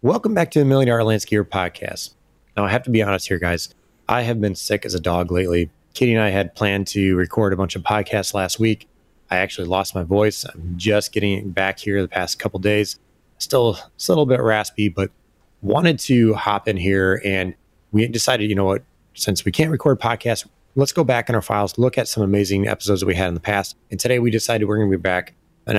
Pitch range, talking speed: 95-115 Hz, 235 wpm